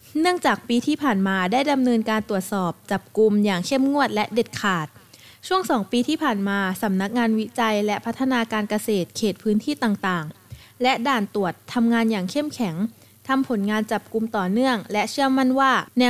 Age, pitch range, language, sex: 20-39, 205-255 Hz, Thai, female